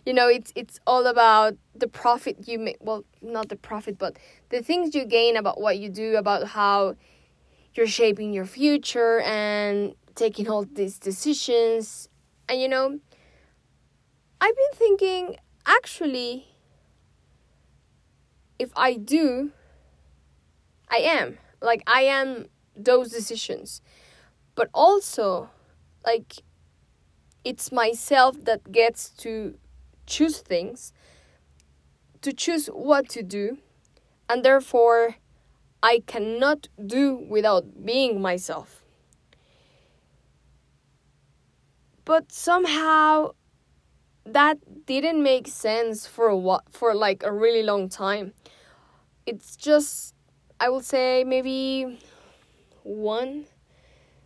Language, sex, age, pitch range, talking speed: English, female, 10-29, 205-265 Hz, 105 wpm